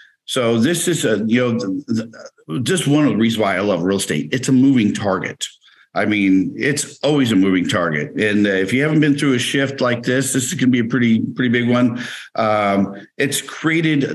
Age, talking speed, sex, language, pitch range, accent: 50-69, 210 wpm, male, English, 110-135 Hz, American